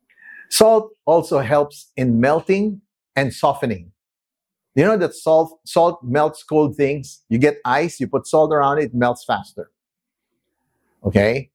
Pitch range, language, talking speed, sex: 120-185 Hz, English, 140 wpm, male